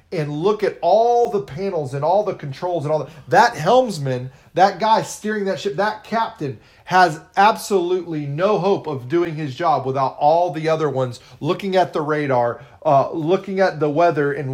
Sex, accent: male, American